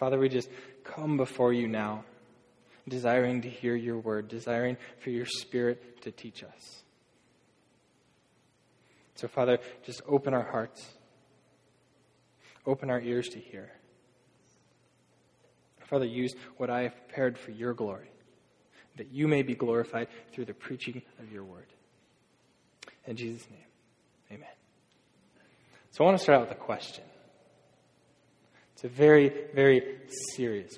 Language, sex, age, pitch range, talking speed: English, male, 20-39, 120-140 Hz, 135 wpm